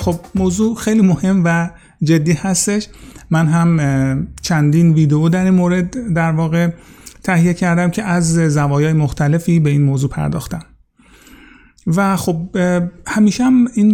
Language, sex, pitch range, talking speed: Persian, male, 150-190 Hz, 130 wpm